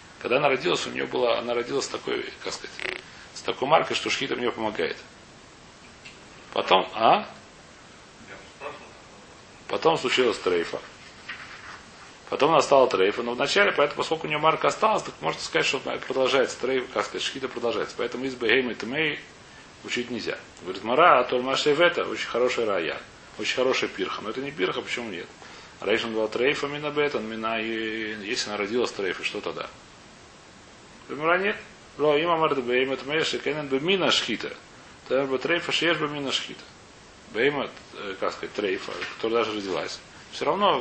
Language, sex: Russian, male